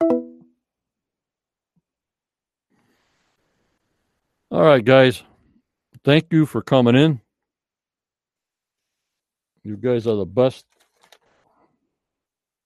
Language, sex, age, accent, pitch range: English, male, 60-79, American, 110-140 Hz